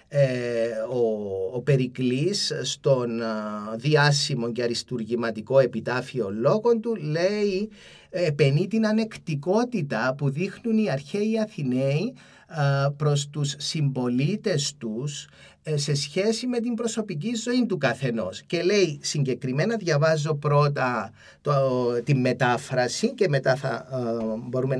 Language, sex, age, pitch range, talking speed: Greek, male, 30-49, 120-180 Hz, 110 wpm